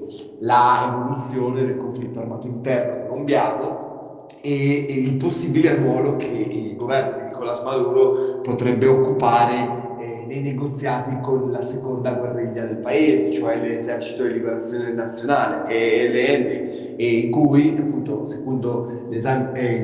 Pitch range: 120-140 Hz